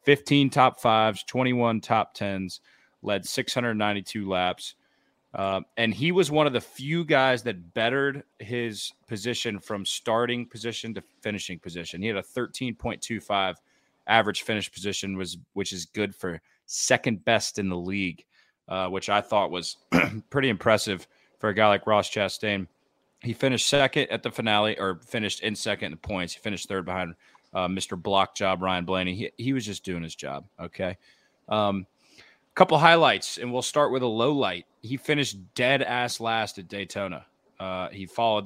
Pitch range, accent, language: 95-120 Hz, American, English